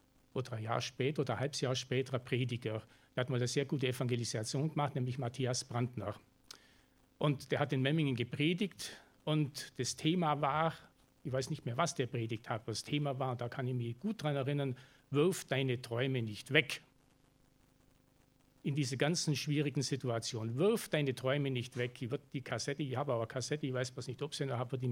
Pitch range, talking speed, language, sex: 125-150 Hz, 195 wpm, German, male